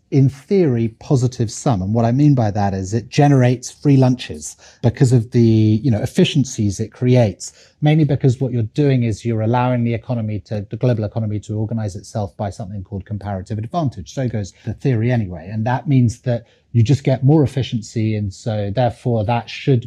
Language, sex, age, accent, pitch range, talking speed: English, male, 30-49, British, 105-130 Hz, 195 wpm